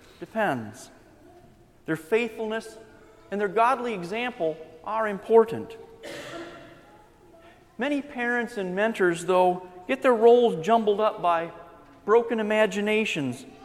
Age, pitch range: 40-59, 200-240 Hz